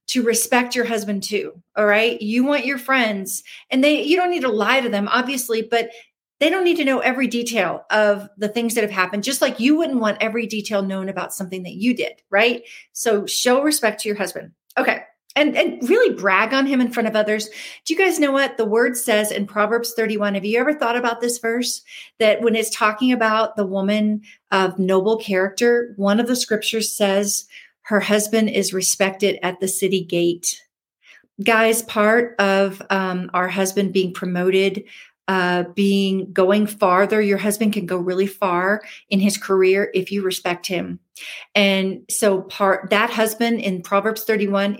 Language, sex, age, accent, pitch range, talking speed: English, female, 40-59, American, 195-235 Hz, 190 wpm